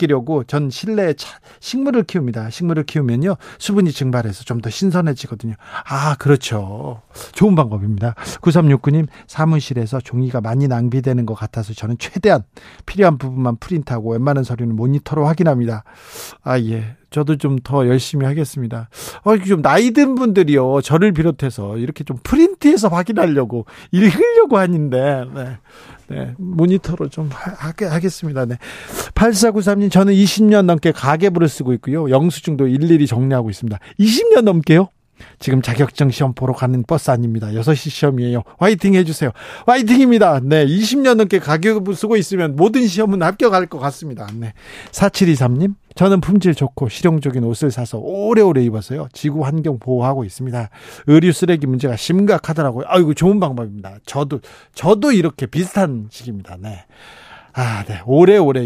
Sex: male